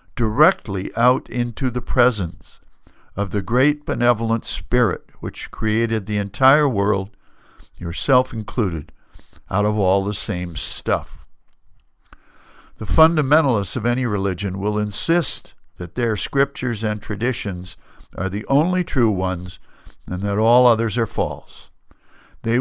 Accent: American